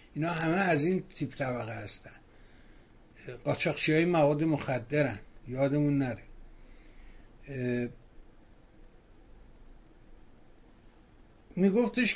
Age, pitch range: 60-79, 145-190 Hz